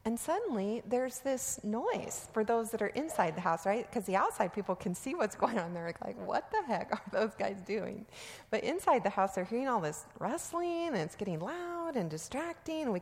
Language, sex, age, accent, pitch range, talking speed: English, female, 30-49, American, 180-255 Hz, 215 wpm